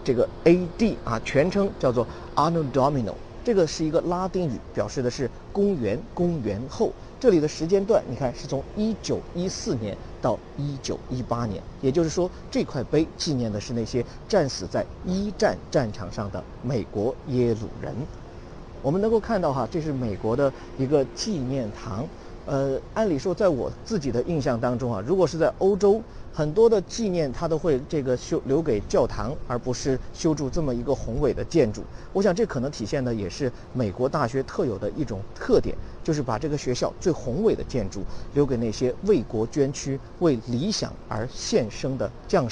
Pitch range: 120-165 Hz